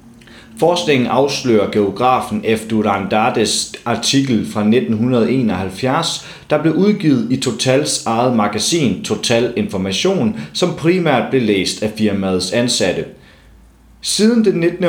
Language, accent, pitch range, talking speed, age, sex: Danish, native, 105-140 Hz, 110 wpm, 30-49, male